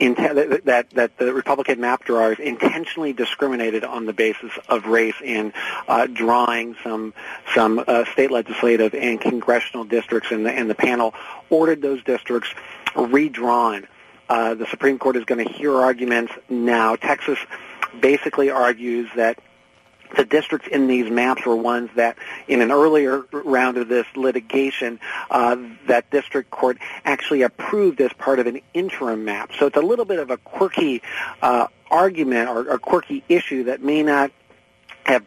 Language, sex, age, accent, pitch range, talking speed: English, male, 40-59, American, 115-140 Hz, 155 wpm